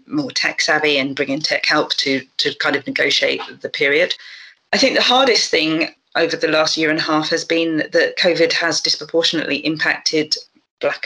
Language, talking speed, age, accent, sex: English, 190 wpm, 40-59, British, female